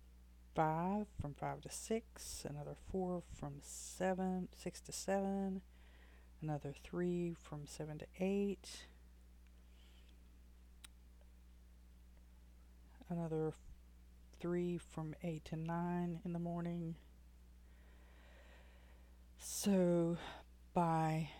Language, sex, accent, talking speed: English, female, American, 80 wpm